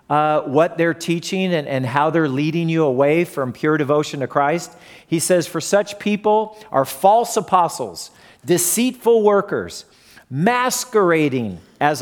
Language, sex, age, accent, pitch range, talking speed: English, male, 40-59, American, 150-195 Hz, 140 wpm